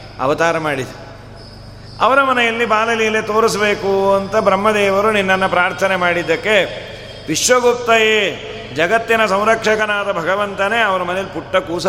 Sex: male